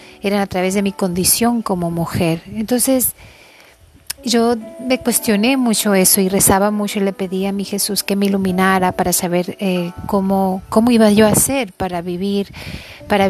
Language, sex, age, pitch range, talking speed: Spanish, female, 40-59, 190-220 Hz, 170 wpm